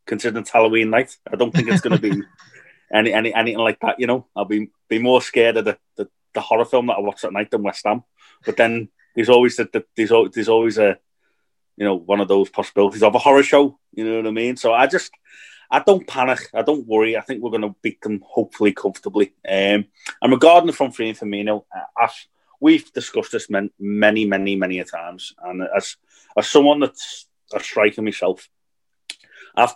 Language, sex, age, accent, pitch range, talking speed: English, male, 30-49, British, 100-125 Hz, 215 wpm